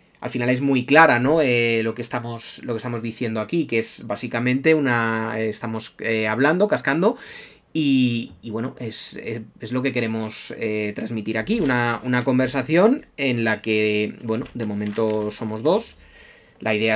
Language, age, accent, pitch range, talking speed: Spanish, 20-39, Spanish, 110-140 Hz, 165 wpm